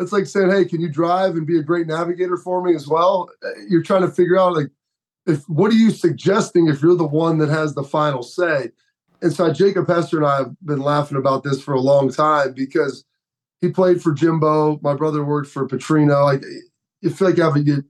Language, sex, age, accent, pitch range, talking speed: English, male, 30-49, American, 150-180 Hz, 230 wpm